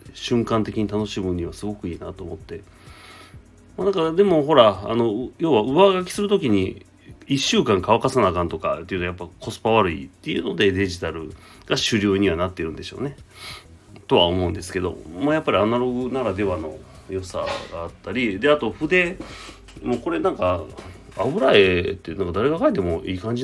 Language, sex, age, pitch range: Japanese, male, 30-49, 90-120 Hz